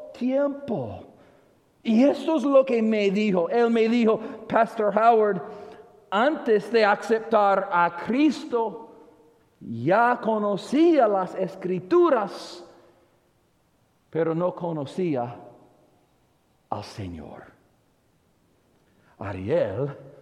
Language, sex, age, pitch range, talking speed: English, male, 50-69, 170-245 Hz, 85 wpm